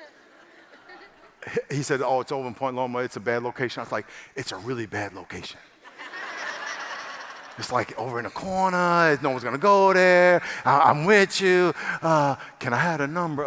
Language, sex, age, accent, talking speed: English, male, 50-69, American, 185 wpm